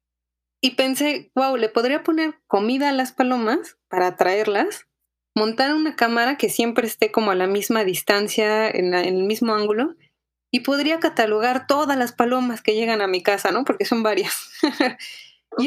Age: 20-39